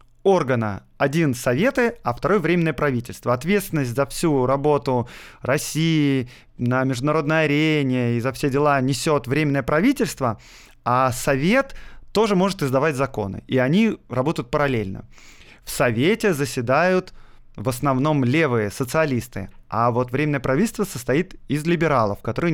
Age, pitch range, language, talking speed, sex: 20-39, 125-165 Hz, Russian, 130 wpm, male